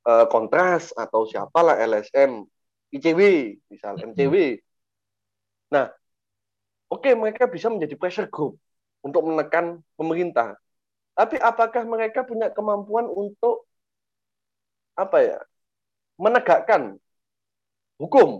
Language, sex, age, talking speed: Indonesian, male, 30-49, 90 wpm